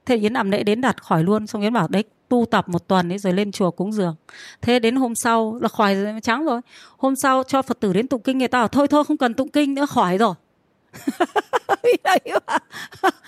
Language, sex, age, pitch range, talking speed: Vietnamese, female, 20-39, 215-285 Hz, 230 wpm